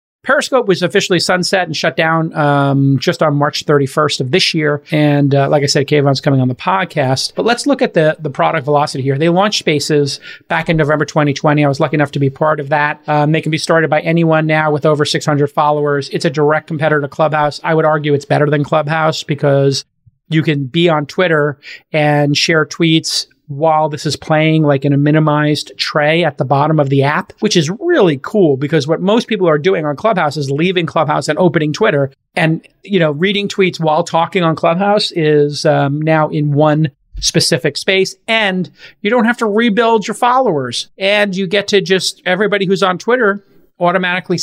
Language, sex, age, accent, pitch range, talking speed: English, male, 30-49, American, 150-180 Hz, 205 wpm